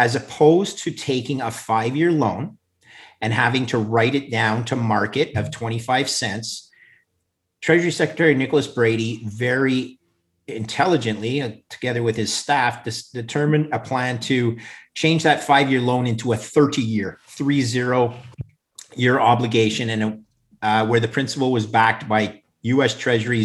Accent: American